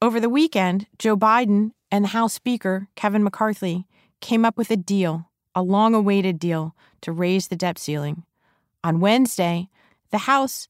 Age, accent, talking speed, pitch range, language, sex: 30-49, American, 155 wpm, 180-230 Hz, English, female